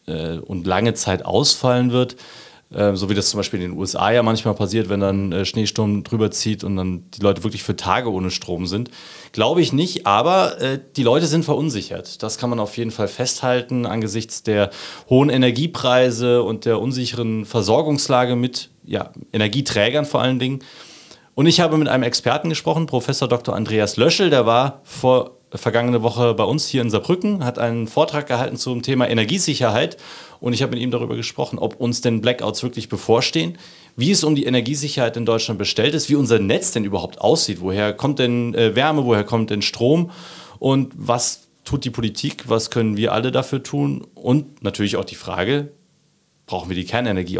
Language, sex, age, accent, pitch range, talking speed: German, male, 30-49, German, 110-140 Hz, 180 wpm